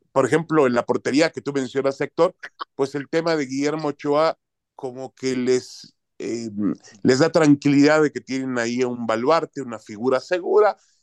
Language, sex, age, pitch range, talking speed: Spanish, male, 40-59, 135-185 Hz, 170 wpm